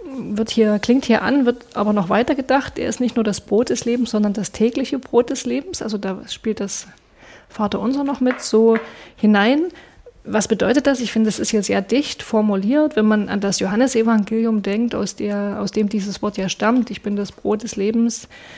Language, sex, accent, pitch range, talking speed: German, female, German, 205-235 Hz, 210 wpm